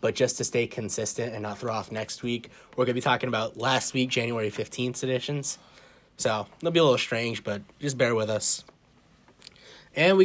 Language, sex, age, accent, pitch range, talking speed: English, male, 20-39, American, 110-135 Hz, 200 wpm